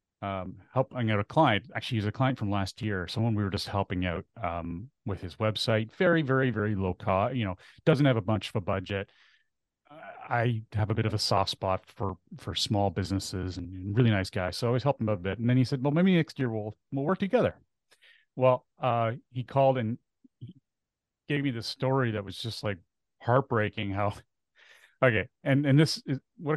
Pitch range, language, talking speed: 100-130 Hz, English, 210 wpm